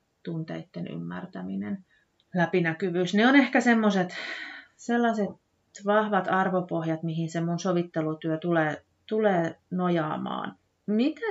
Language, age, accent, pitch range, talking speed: Finnish, 30-49, native, 170-245 Hz, 95 wpm